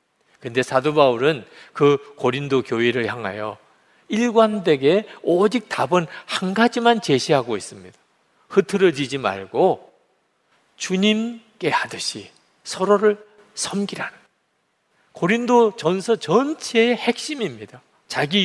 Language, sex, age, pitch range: Korean, male, 40-59, 140-210 Hz